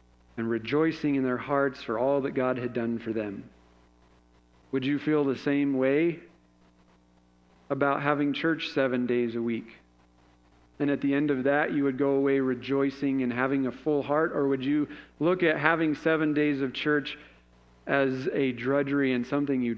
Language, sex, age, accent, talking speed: English, male, 40-59, American, 175 wpm